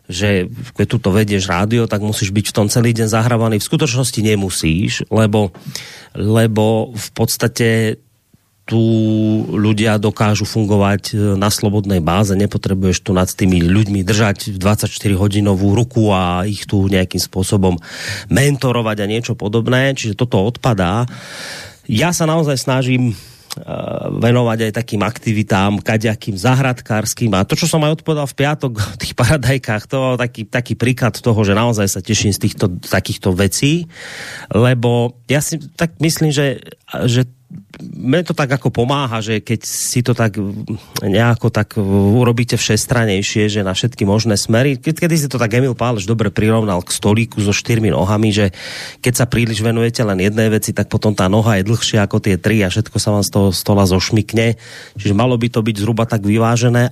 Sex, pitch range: male, 105-125 Hz